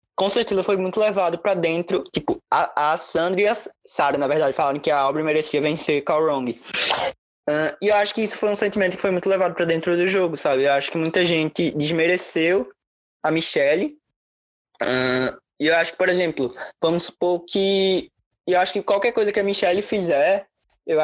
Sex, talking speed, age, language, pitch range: male, 195 wpm, 20-39, Portuguese, 150-185 Hz